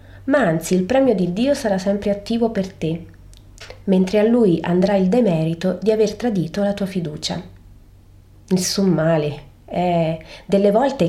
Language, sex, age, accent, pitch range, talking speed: Italian, female, 30-49, native, 160-215 Hz, 150 wpm